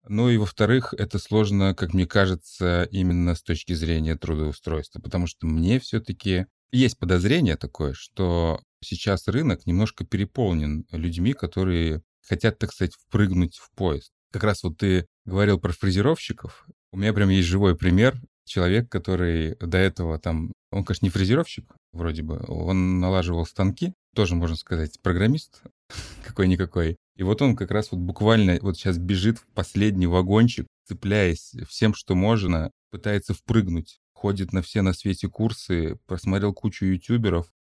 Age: 30-49